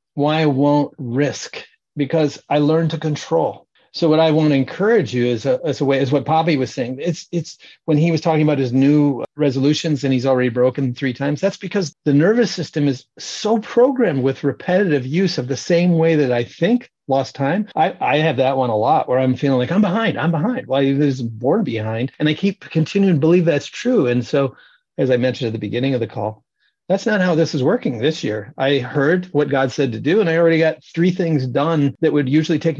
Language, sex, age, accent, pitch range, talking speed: English, male, 40-59, American, 135-170 Hz, 230 wpm